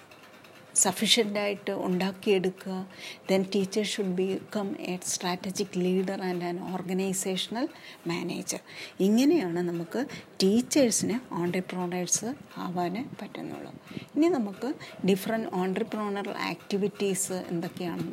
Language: Malayalam